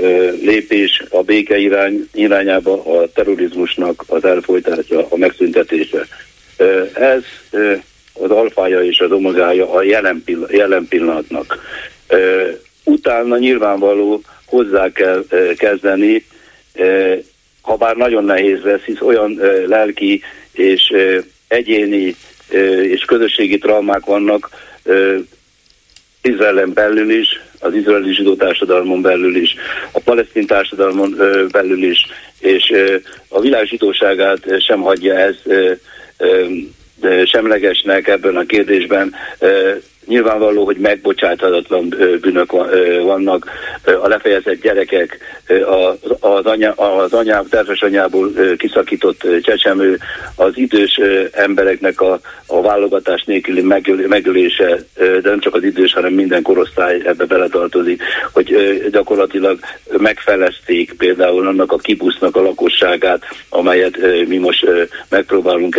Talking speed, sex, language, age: 100 wpm, male, Hungarian, 60-79